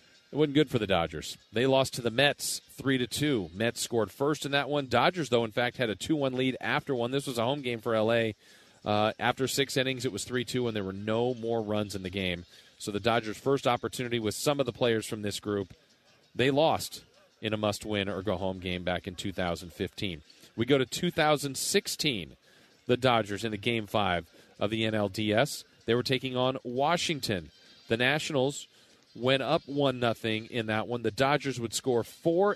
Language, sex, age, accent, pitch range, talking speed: English, male, 40-59, American, 110-140 Hz, 200 wpm